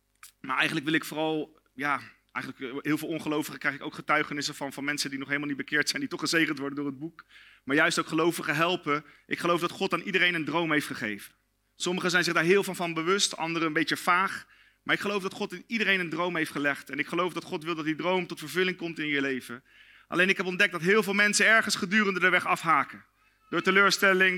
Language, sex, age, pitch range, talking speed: Dutch, male, 40-59, 150-190 Hz, 240 wpm